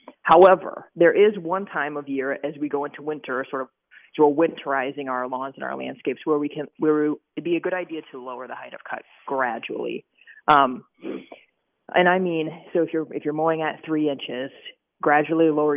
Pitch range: 135-160 Hz